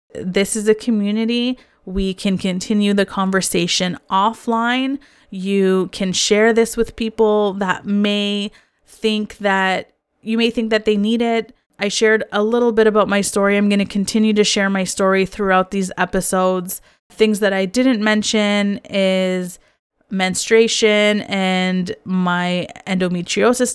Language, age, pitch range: English, 20-39, 185-215 Hz